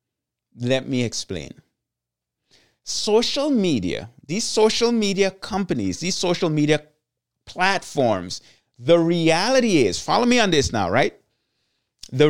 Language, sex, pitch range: English, male, 150-220 Hz